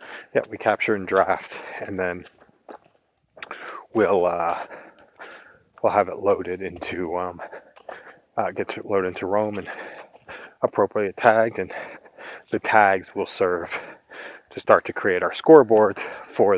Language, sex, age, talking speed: English, male, 30-49, 130 wpm